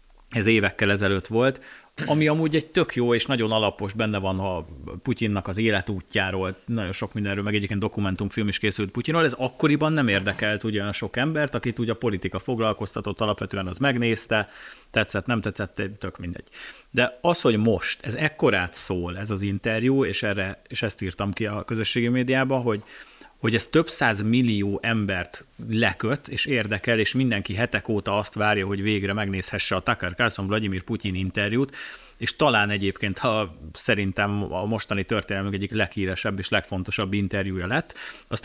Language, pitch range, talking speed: Hungarian, 100-120 Hz, 165 wpm